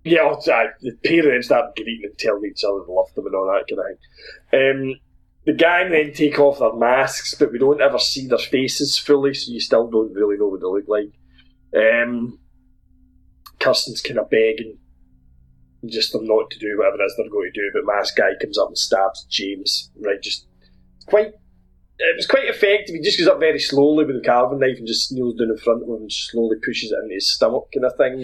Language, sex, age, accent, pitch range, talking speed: English, male, 20-39, British, 105-155 Hz, 220 wpm